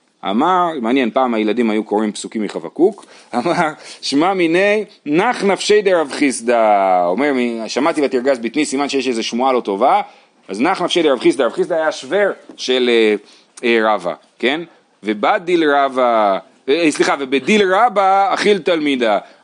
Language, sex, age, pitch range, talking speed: Hebrew, male, 30-49, 140-205 Hz, 140 wpm